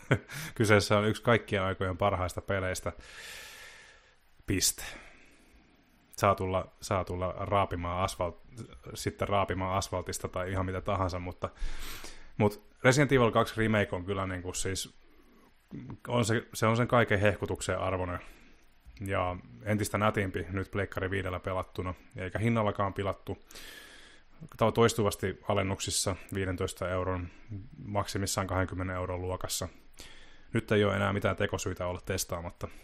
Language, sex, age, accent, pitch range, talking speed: Finnish, male, 20-39, native, 95-105 Hz, 120 wpm